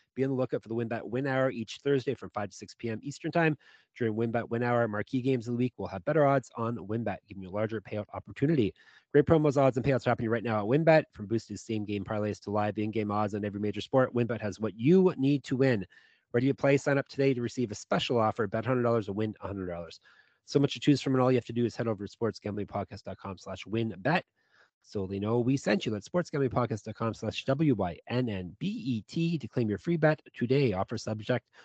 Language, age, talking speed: English, 30-49, 230 wpm